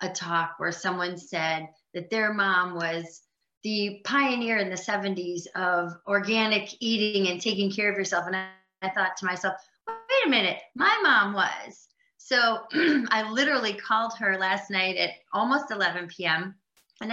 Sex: female